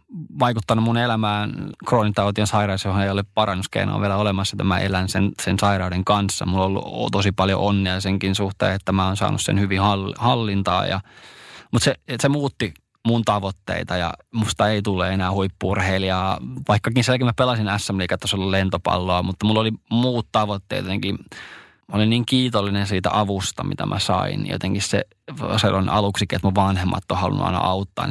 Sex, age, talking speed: male, 20-39, 165 wpm